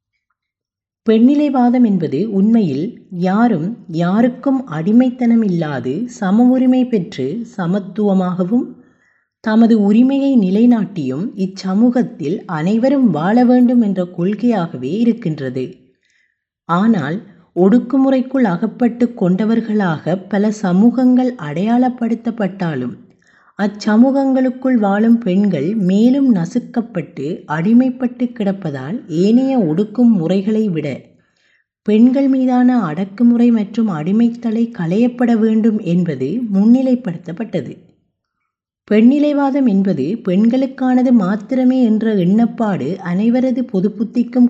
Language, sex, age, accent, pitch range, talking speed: Tamil, female, 20-39, native, 190-245 Hz, 75 wpm